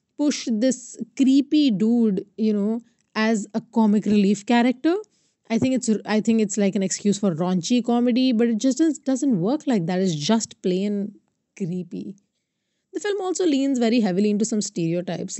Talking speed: 170 wpm